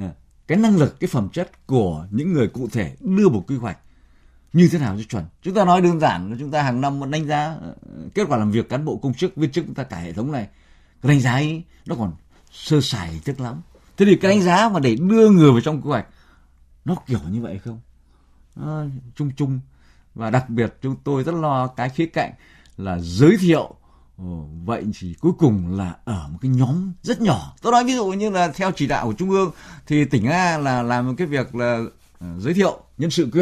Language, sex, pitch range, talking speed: Vietnamese, male, 100-165 Hz, 235 wpm